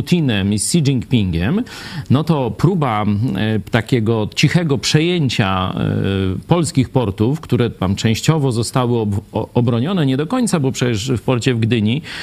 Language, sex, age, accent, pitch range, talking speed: Polish, male, 40-59, native, 110-135 Hz, 130 wpm